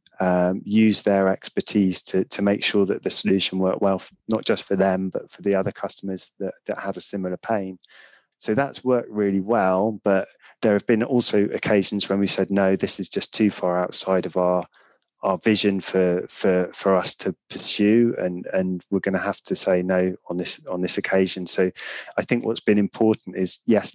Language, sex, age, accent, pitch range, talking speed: English, male, 20-39, British, 95-110 Hz, 205 wpm